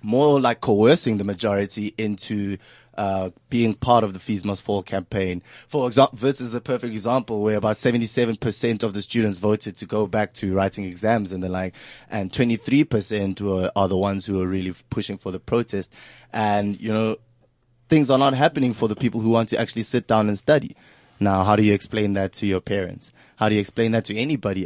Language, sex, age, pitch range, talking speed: English, male, 20-39, 105-140 Hz, 205 wpm